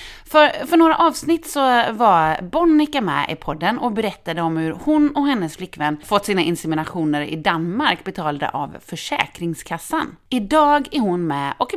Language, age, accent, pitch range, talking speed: Swedish, 30-49, native, 170-275 Hz, 160 wpm